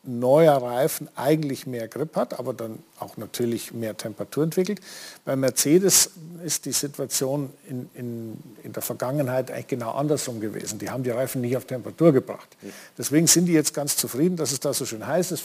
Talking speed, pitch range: 185 wpm, 130-175 Hz